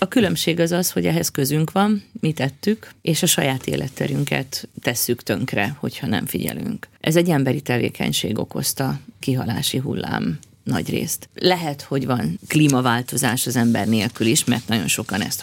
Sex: female